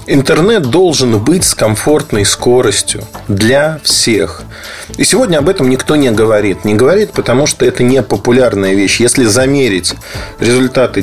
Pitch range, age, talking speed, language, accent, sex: 105-140 Hz, 30-49, 140 wpm, Russian, native, male